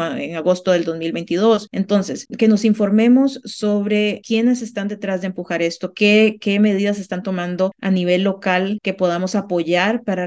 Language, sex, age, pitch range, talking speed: Spanish, female, 30-49, 180-215 Hz, 160 wpm